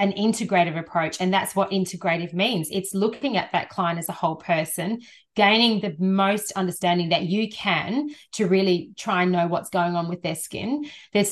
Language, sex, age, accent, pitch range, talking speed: English, female, 30-49, Australian, 175-205 Hz, 190 wpm